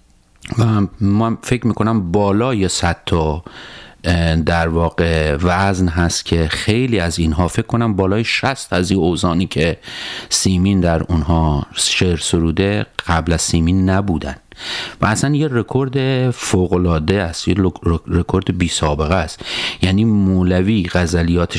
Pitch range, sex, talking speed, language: 85-125 Hz, male, 125 wpm, Persian